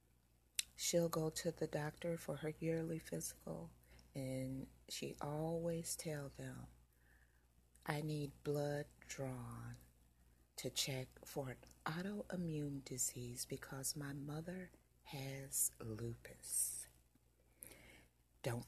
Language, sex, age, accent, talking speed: English, female, 40-59, American, 95 wpm